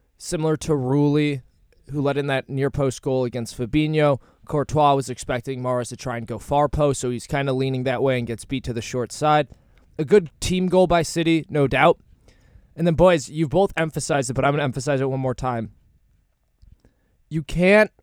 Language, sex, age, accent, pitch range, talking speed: English, male, 20-39, American, 120-155 Hz, 200 wpm